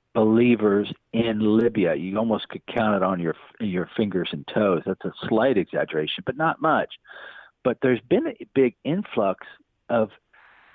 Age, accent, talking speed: 50-69, American, 155 wpm